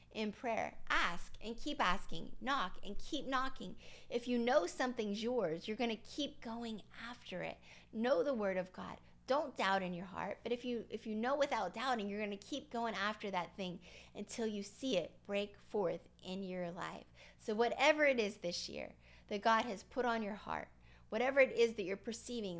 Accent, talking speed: American, 200 wpm